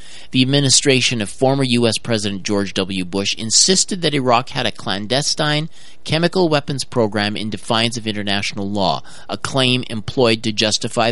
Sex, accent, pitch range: male, American, 100-130 Hz